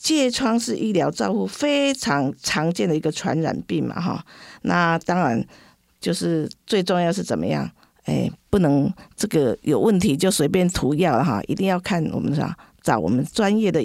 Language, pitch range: Chinese, 165-220 Hz